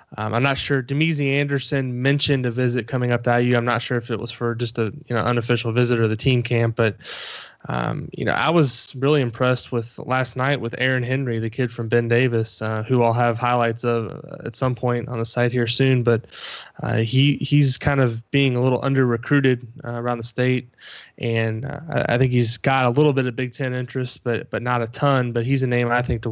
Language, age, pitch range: English, 20-39, 115-130 Hz